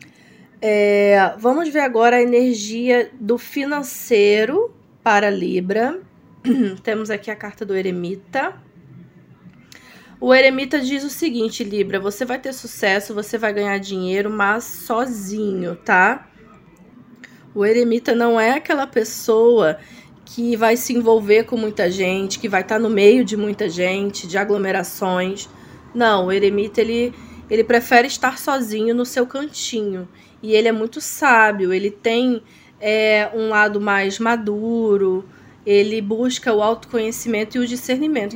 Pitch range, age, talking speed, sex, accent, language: 205-250 Hz, 20-39, 130 wpm, female, Brazilian, Portuguese